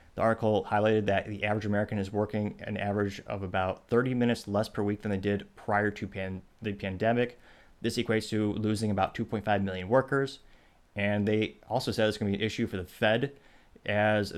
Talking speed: 200 wpm